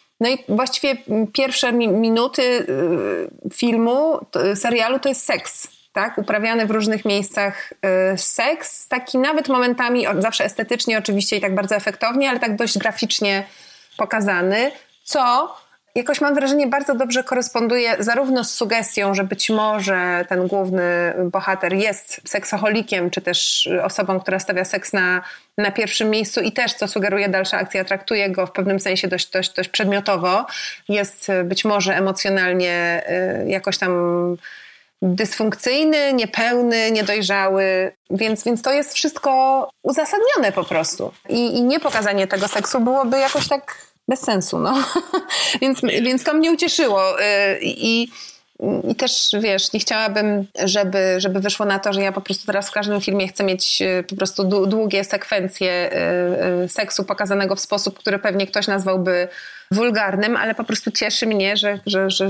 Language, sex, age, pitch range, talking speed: Polish, female, 30-49, 195-245 Hz, 145 wpm